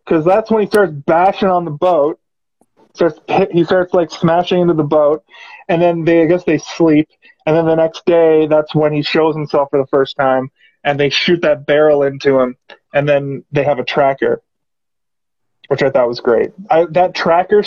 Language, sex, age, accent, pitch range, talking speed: English, male, 20-39, American, 155-195 Hz, 205 wpm